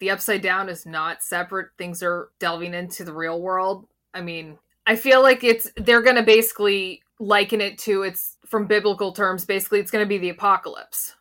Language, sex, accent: English, female, American